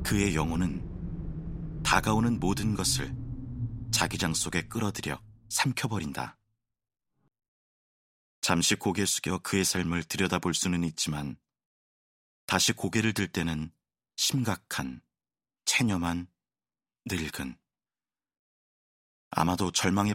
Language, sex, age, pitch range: Korean, male, 30-49, 80-110 Hz